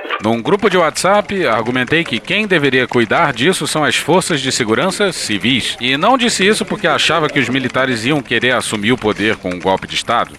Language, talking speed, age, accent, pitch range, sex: Portuguese, 200 wpm, 40-59, Brazilian, 100-145 Hz, male